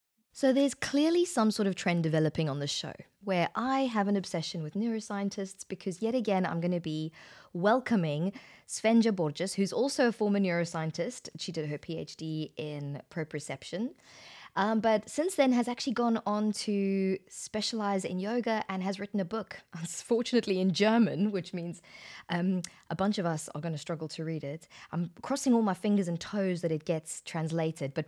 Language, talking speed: English, 180 wpm